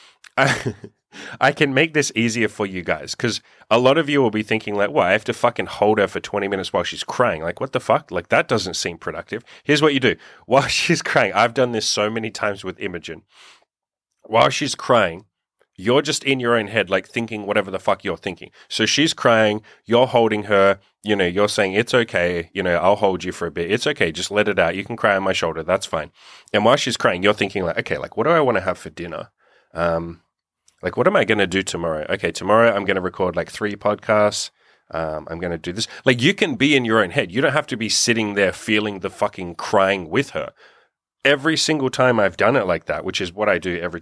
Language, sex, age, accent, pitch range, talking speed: English, male, 30-49, Australian, 95-120 Hz, 245 wpm